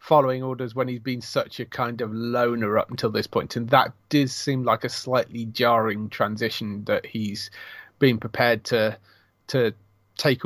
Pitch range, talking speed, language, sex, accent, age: 110-140 Hz, 170 wpm, English, male, British, 30-49